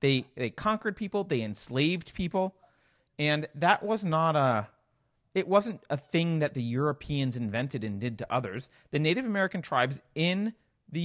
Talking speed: 170 wpm